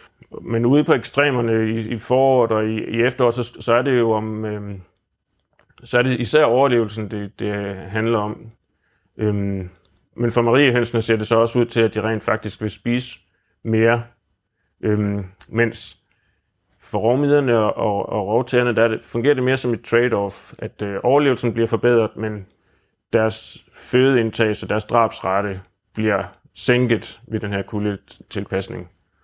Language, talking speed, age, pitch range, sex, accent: Danish, 160 wpm, 30-49, 105-120 Hz, male, native